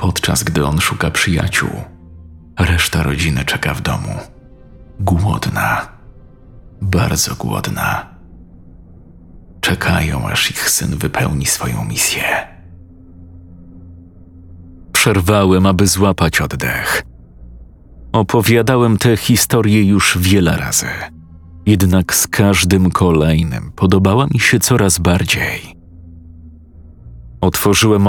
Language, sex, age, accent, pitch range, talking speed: Polish, male, 40-59, native, 85-105 Hz, 85 wpm